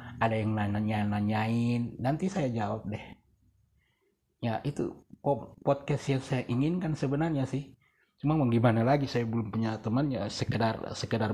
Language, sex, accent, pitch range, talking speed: Indonesian, male, native, 90-115 Hz, 130 wpm